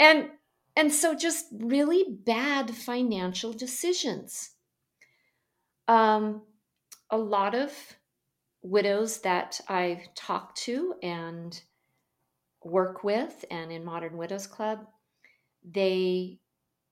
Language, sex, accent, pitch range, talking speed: English, female, American, 160-195 Hz, 90 wpm